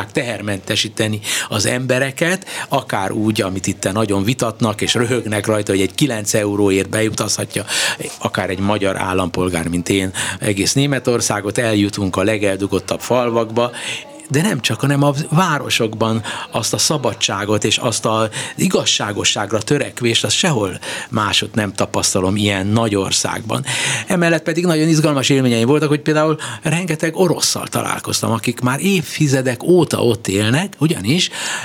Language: Hungarian